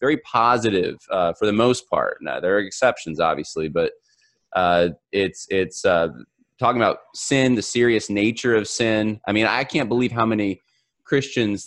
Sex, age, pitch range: male, 20-39, 95-120 Hz